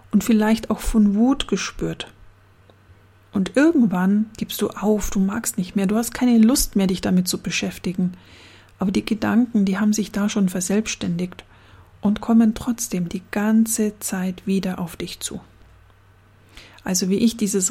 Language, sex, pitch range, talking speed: German, female, 170-220 Hz, 160 wpm